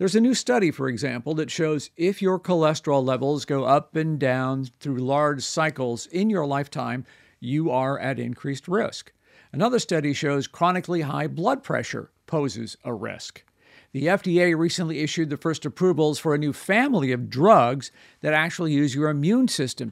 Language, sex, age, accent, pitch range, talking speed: English, male, 50-69, American, 135-175 Hz, 170 wpm